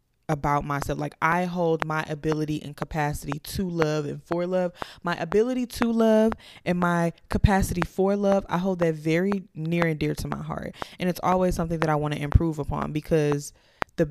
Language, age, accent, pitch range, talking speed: English, 20-39, American, 150-180 Hz, 190 wpm